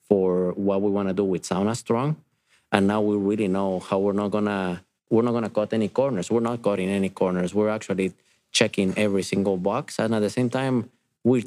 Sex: male